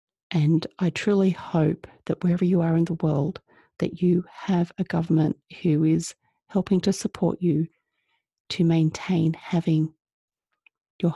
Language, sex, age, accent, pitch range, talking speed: English, female, 40-59, Australian, 160-190 Hz, 140 wpm